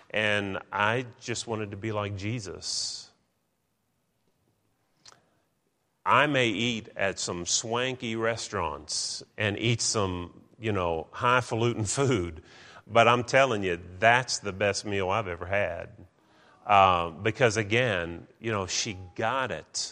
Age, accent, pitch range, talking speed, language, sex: 40-59, American, 105-135 Hz, 125 wpm, English, male